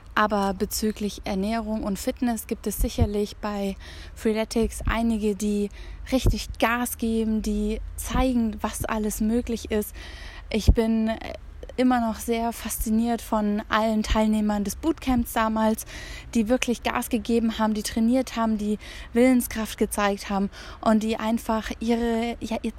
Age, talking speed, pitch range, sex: 20-39, 130 wpm, 205-235 Hz, female